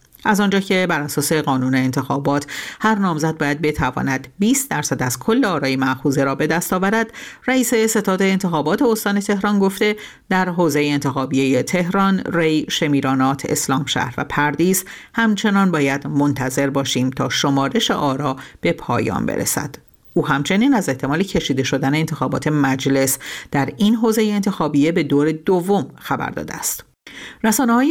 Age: 50-69